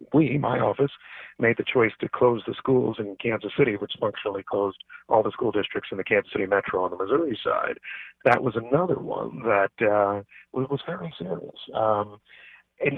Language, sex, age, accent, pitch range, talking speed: English, male, 40-59, American, 110-135 Hz, 185 wpm